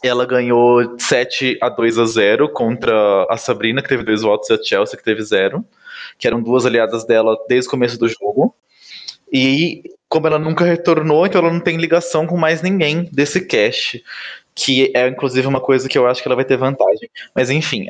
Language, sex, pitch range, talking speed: Portuguese, male, 155-215 Hz, 195 wpm